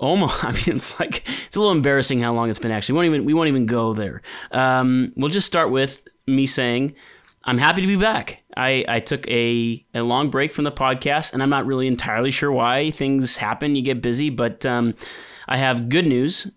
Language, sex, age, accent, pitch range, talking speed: English, male, 30-49, American, 120-140 Hz, 215 wpm